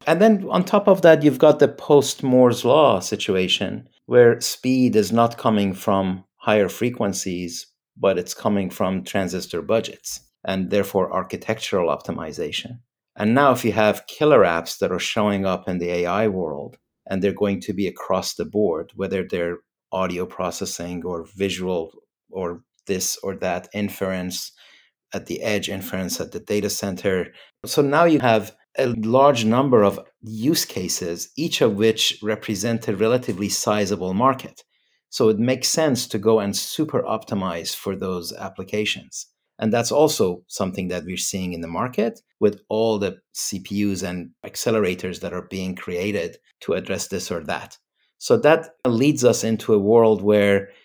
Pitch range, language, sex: 95-115 Hz, English, male